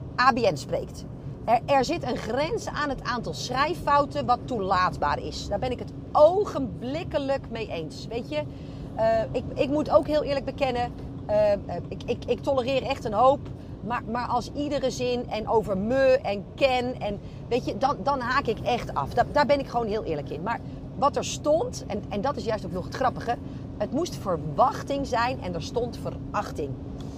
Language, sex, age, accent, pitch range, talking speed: Dutch, female, 40-59, Dutch, 215-275 Hz, 190 wpm